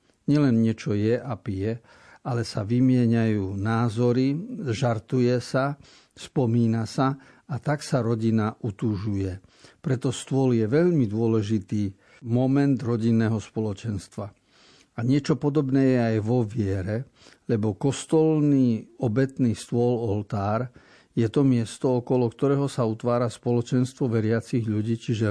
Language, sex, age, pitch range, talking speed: Slovak, male, 50-69, 110-135 Hz, 115 wpm